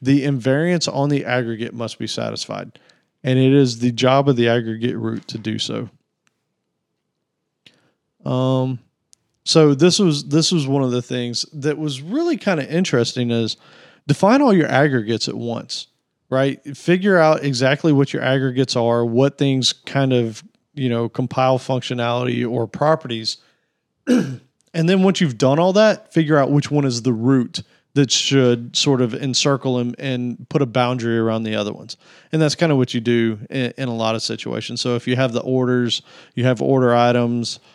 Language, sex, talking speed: English, male, 180 wpm